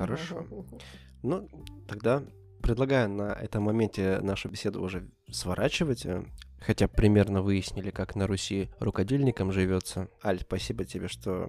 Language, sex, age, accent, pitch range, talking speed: Russian, male, 20-39, native, 95-110 Hz, 120 wpm